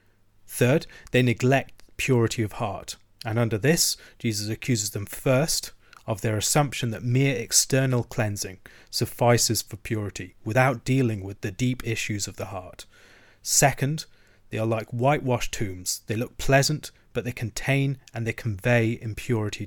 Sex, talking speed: male, 145 wpm